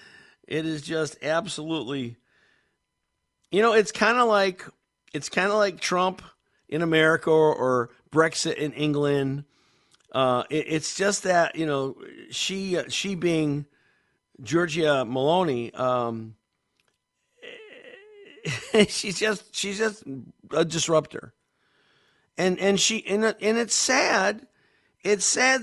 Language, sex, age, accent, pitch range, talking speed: English, male, 50-69, American, 145-190 Hz, 115 wpm